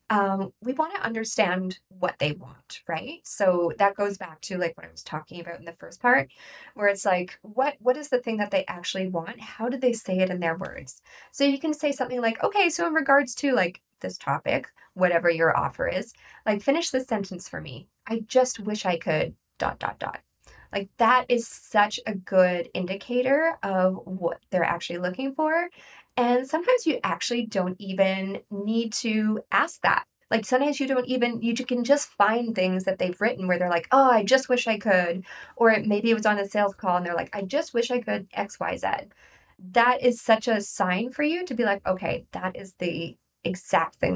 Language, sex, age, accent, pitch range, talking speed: English, female, 20-39, American, 185-250 Hz, 210 wpm